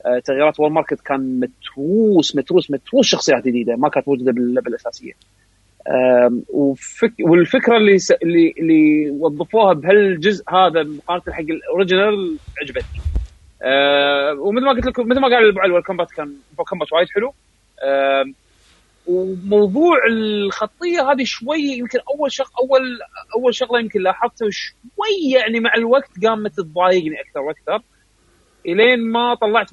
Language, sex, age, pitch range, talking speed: Arabic, male, 30-49, 155-255 Hz, 125 wpm